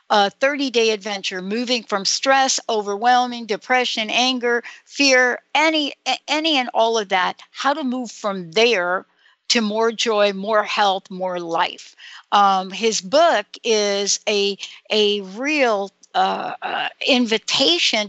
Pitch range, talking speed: 200-260 Hz, 125 wpm